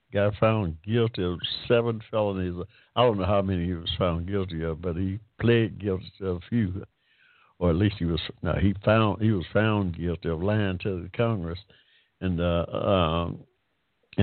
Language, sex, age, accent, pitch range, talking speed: English, male, 60-79, American, 90-110 Hz, 180 wpm